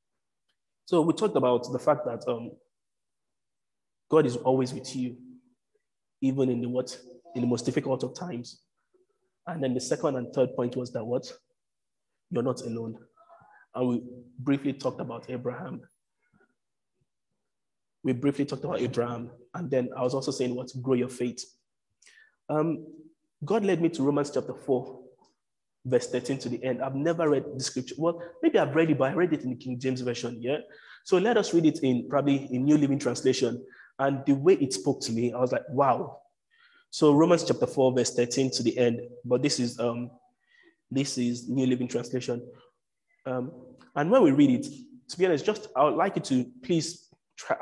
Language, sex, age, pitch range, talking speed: English, male, 20-39, 125-160 Hz, 185 wpm